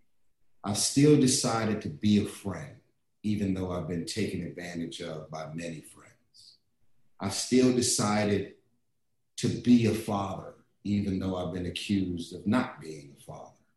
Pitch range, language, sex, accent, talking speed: 90-115 Hz, English, male, American, 150 wpm